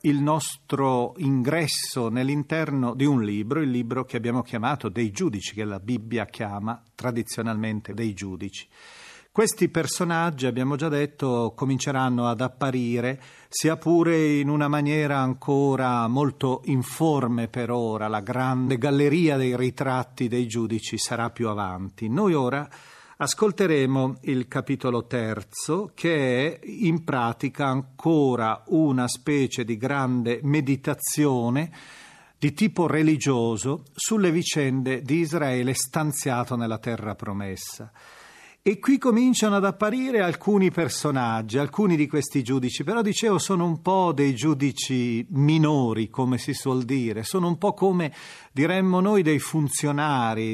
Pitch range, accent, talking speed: 120-160 Hz, native, 125 wpm